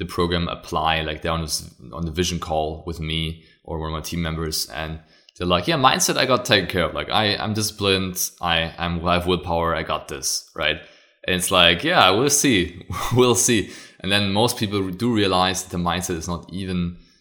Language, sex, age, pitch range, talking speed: English, male, 20-39, 85-95 Hz, 215 wpm